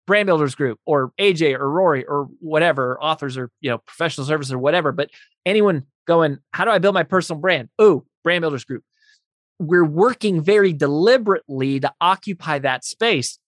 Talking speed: 175 wpm